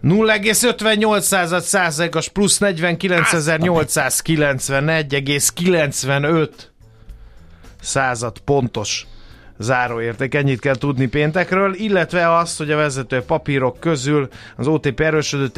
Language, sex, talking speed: Hungarian, male, 75 wpm